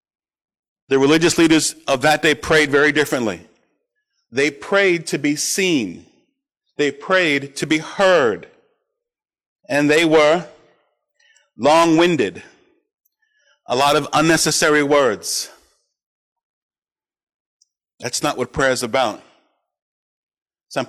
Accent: American